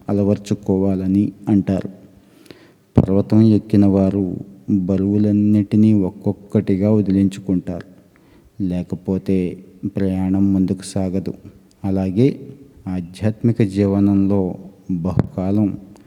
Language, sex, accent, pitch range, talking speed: Telugu, male, native, 95-100 Hz, 60 wpm